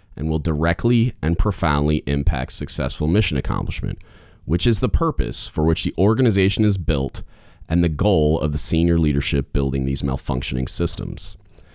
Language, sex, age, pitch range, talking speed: English, male, 30-49, 70-95 Hz, 155 wpm